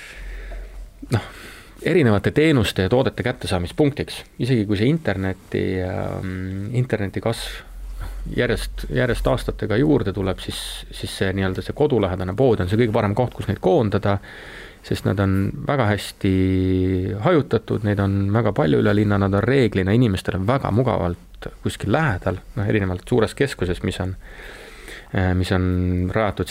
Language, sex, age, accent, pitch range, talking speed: English, male, 30-49, Finnish, 90-110 Hz, 145 wpm